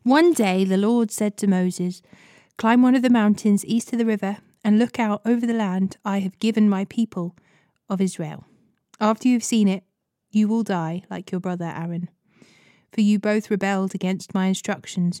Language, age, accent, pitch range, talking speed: English, 30-49, British, 185-215 Hz, 190 wpm